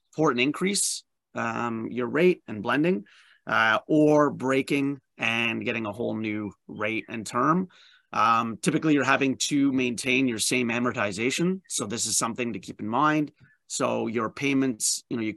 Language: English